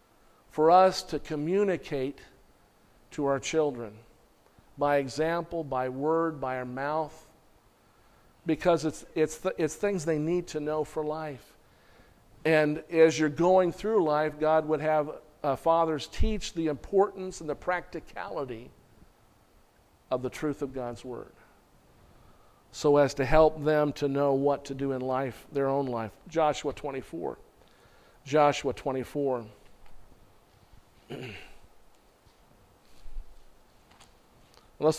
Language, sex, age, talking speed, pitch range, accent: English, male, 50-69, 120 wpm, 135-160 Hz, American